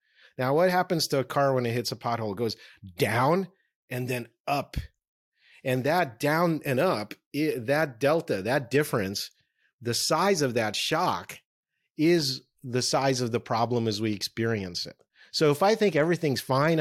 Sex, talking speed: male, 170 wpm